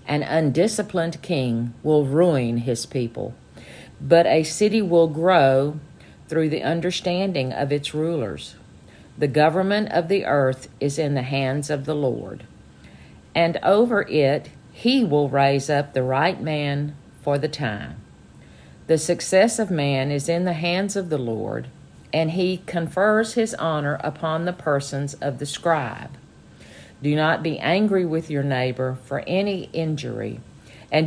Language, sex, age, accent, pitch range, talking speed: English, female, 50-69, American, 135-170 Hz, 145 wpm